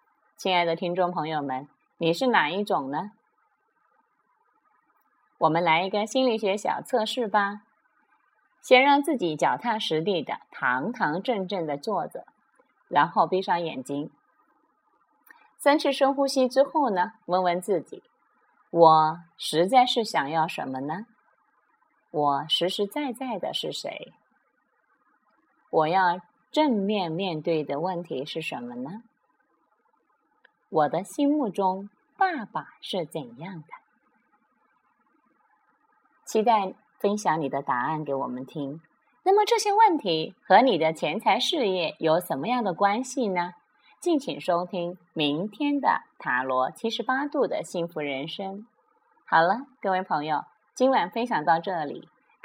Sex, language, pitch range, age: female, Chinese, 165-260 Hz, 30-49